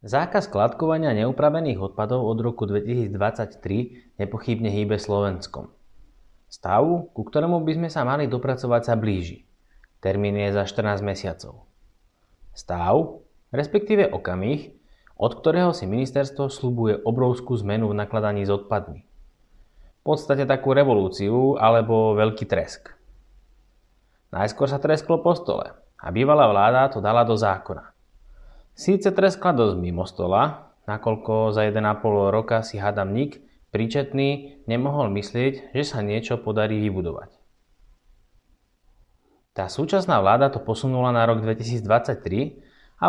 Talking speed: 120 wpm